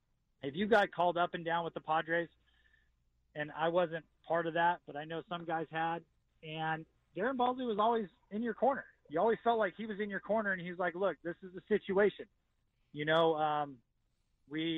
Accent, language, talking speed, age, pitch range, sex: American, English, 205 wpm, 30-49, 150-185 Hz, male